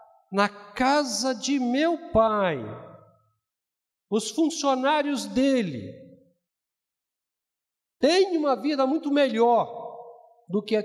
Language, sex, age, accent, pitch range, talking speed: Portuguese, male, 60-79, Brazilian, 205-240 Hz, 90 wpm